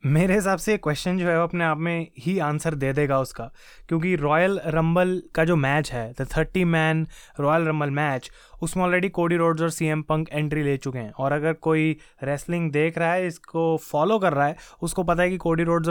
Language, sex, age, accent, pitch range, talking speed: Hindi, male, 20-39, native, 145-175 Hz, 225 wpm